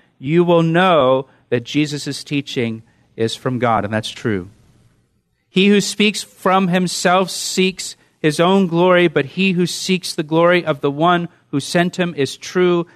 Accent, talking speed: American, 160 wpm